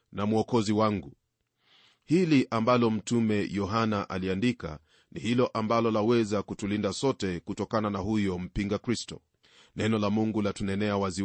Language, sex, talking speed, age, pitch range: Swahili, male, 135 wpm, 40-59, 100-120 Hz